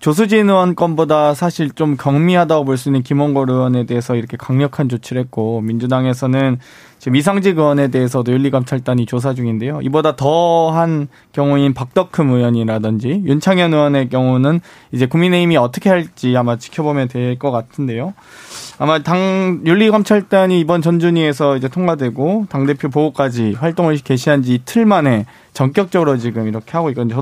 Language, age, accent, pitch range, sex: Korean, 20-39, native, 125-170 Hz, male